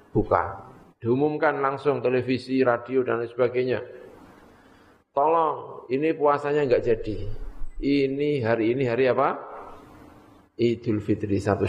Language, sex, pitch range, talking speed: Indonesian, male, 105-145 Hz, 110 wpm